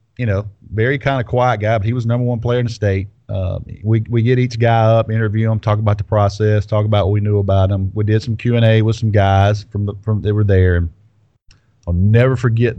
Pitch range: 100-115 Hz